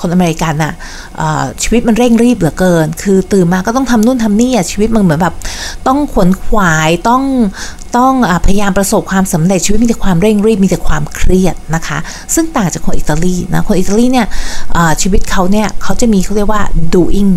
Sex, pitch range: female, 160-205 Hz